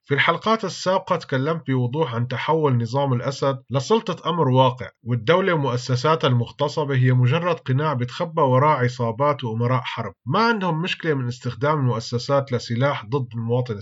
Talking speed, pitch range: 140 wpm, 120-160 Hz